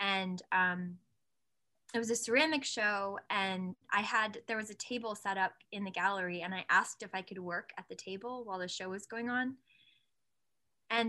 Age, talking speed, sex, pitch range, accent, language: 10-29, 195 wpm, female, 190-230 Hz, American, English